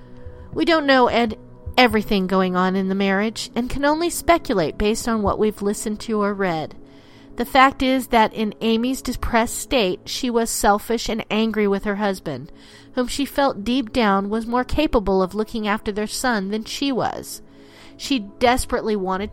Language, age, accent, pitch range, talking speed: English, 40-59, American, 185-250 Hz, 180 wpm